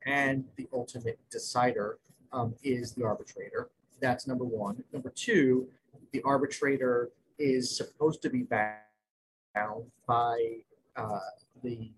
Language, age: English, 40-59